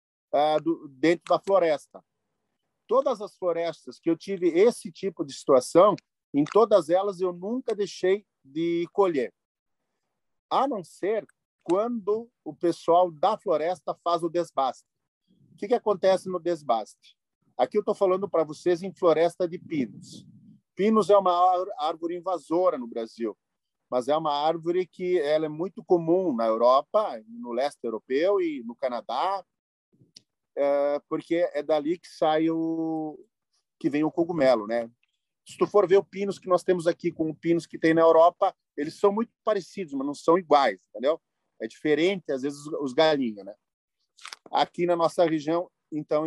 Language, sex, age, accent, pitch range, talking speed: Portuguese, male, 40-59, Brazilian, 155-195 Hz, 155 wpm